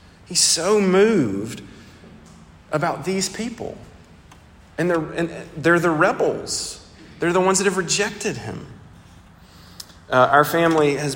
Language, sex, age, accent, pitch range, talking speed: English, male, 40-59, American, 115-160 Hz, 125 wpm